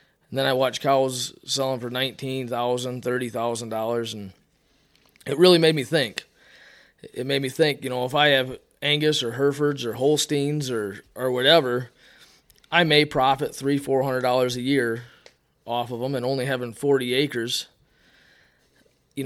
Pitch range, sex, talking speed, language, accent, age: 120-140 Hz, male, 155 wpm, English, American, 20-39